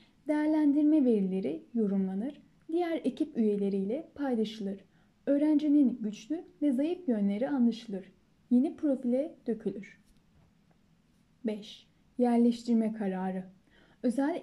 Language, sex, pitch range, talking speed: Turkish, female, 210-290 Hz, 85 wpm